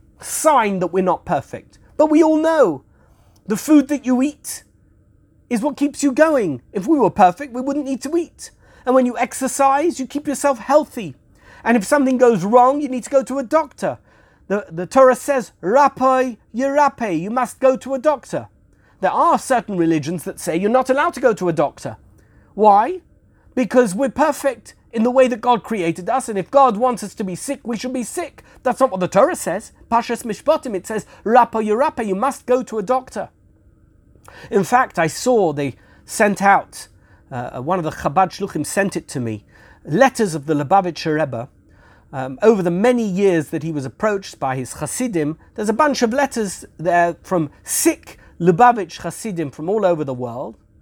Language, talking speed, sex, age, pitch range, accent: English, 190 wpm, male, 40-59, 175-265 Hz, British